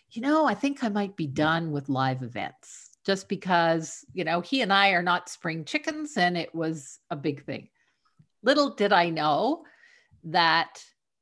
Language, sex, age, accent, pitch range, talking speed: English, female, 50-69, American, 155-225 Hz, 175 wpm